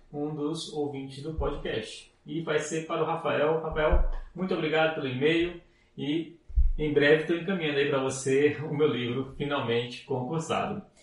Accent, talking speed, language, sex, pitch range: Brazilian, 150 wpm, Spanish, male, 140-165 Hz